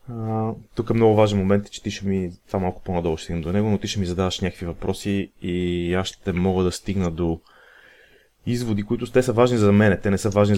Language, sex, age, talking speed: Bulgarian, male, 30-49, 235 wpm